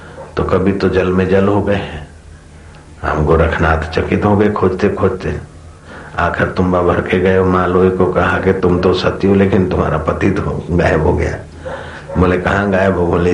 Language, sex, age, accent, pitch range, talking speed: Hindi, male, 60-79, native, 85-100 Hz, 175 wpm